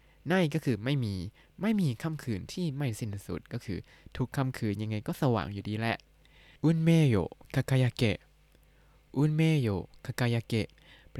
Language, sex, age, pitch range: Thai, male, 20-39, 110-150 Hz